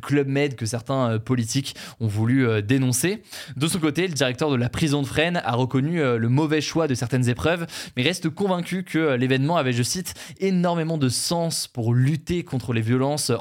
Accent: French